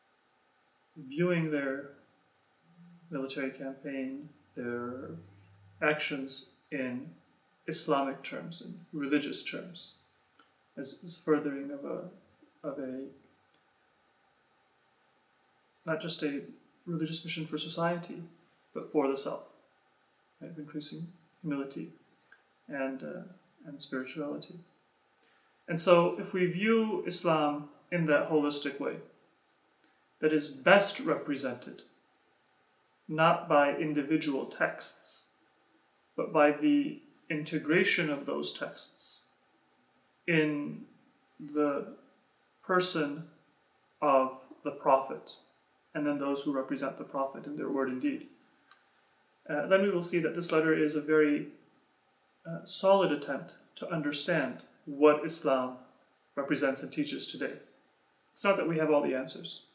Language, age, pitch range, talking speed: English, 30-49, 140-175 Hz, 110 wpm